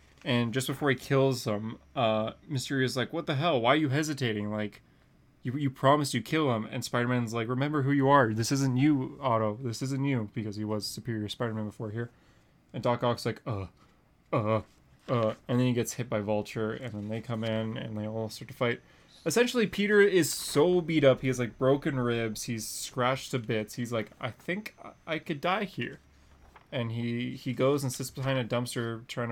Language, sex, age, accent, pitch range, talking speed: English, male, 20-39, American, 115-140 Hz, 210 wpm